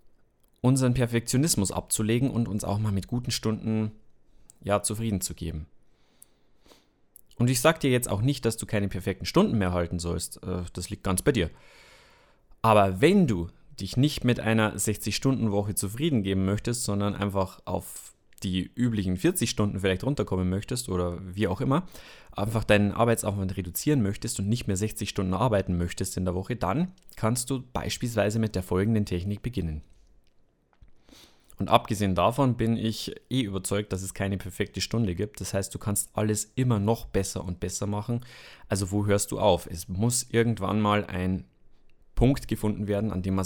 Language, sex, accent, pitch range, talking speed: German, male, German, 95-120 Hz, 170 wpm